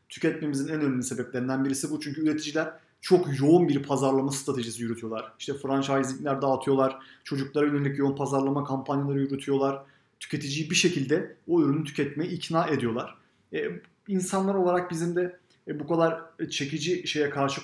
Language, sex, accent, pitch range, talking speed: Turkish, male, native, 130-160 Hz, 145 wpm